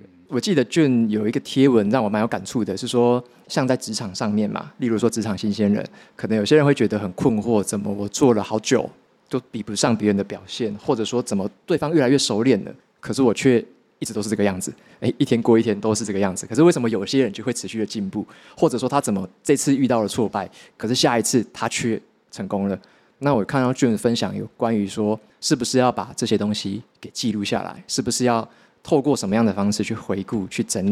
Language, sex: Chinese, male